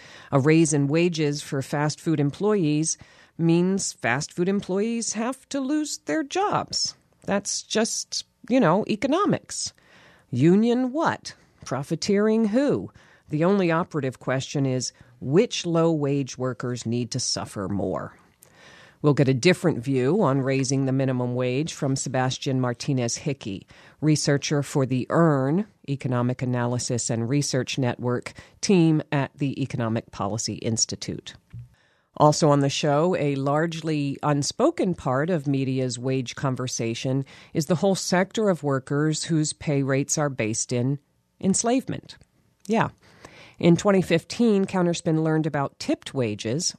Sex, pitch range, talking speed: female, 125-165 Hz, 125 wpm